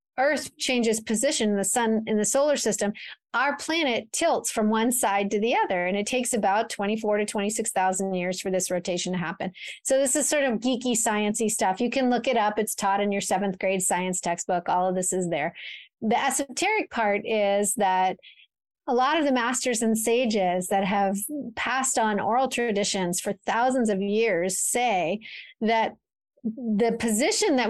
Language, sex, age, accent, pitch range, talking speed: English, female, 30-49, American, 205-255 Hz, 185 wpm